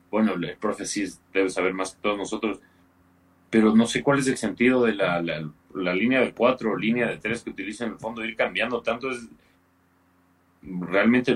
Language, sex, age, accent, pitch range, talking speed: Spanish, male, 30-49, Mexican, 90-120 Hz, 200 wpm